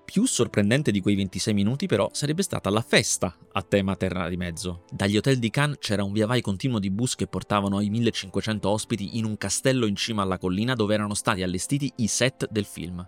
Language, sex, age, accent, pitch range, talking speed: Italian, male, 30-49, native, 95-125 Hz, 215 wpm